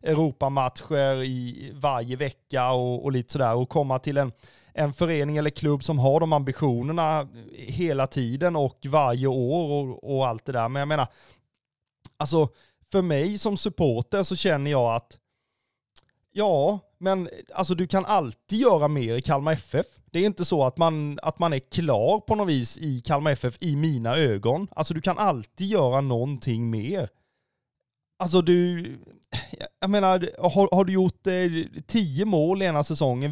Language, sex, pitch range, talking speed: Swedish, male, 135-175 Hz, 165 wpm